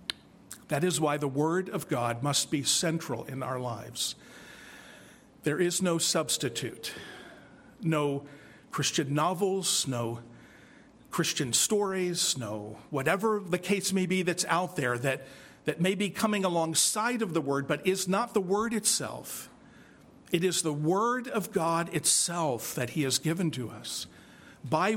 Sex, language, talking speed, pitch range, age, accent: male, English, 145 wpm, 150-200 Hz, 50-69, American